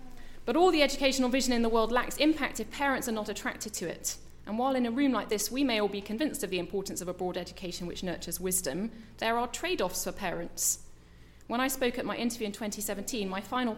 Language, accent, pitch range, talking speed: English, British, 195-250 Hz, 235 wpm